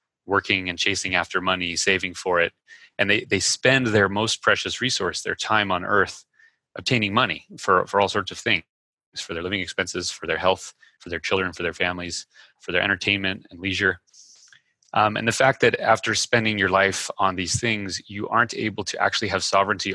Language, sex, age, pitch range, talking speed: English, male, 30-49, 90-105 Hz, 195 wpm